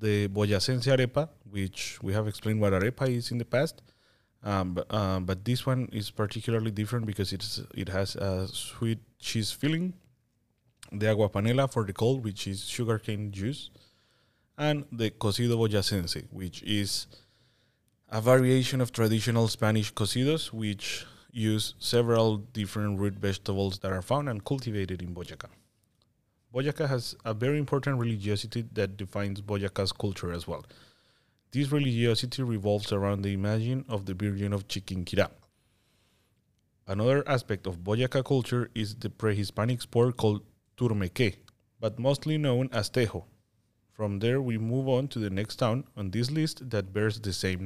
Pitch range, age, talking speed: 100-125 Hz, 30-49, 150 wpm